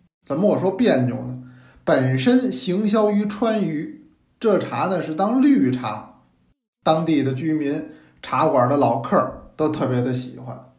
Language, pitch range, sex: Chinese, 125-200 Hz, male